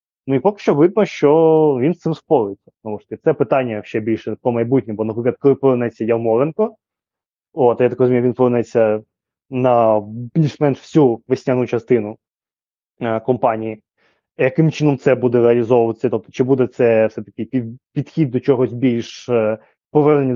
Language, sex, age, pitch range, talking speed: Ukrainian, male, 20-39, 115-140 Hz, 155 wpm